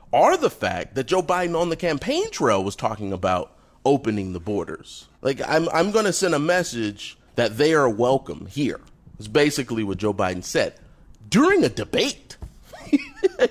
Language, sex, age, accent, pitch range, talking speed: English, male, 30-49, American, 105-175 Hz, 170 wpm